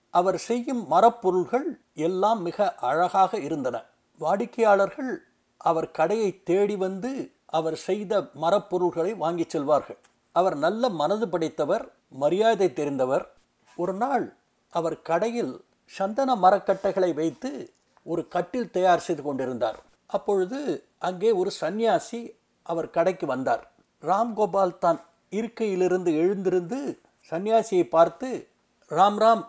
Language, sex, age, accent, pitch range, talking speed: Tamil, male, 60-79, native, 170-225 Hz, 100 wpm